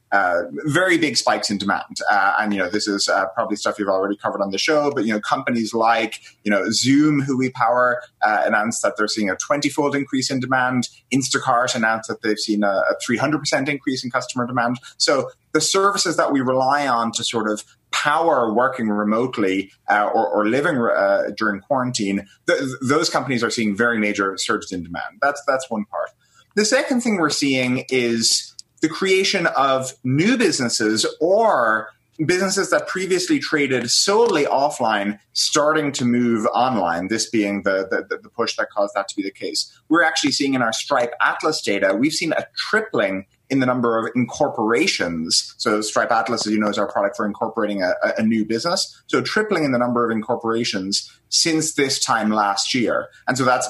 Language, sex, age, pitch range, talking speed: English, male, 30-49, 105-135 Hz, 190 wpm